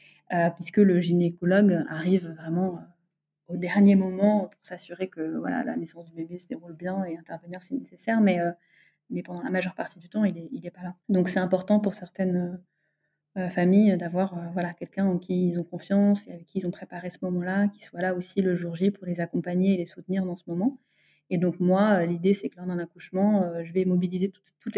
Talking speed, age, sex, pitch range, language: 230 wpm, 20-39, female, 175-195 Hz, French